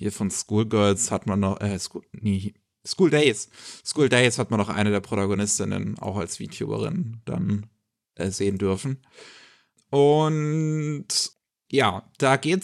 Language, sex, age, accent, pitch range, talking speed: German, male, 30-49, German, 115-145 Hz, 140 wpm